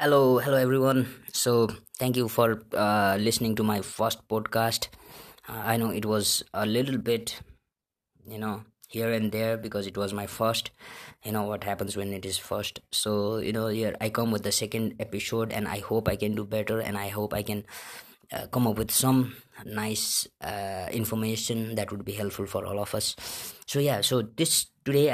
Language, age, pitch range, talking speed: English, 20-39, 105-120 Hz, 200 wpm